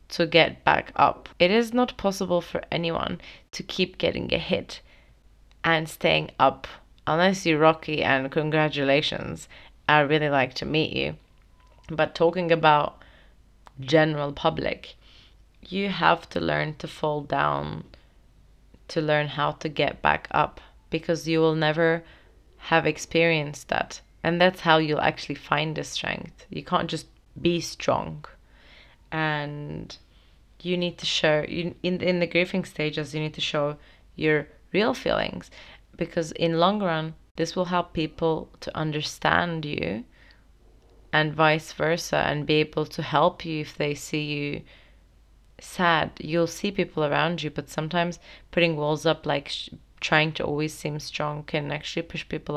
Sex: female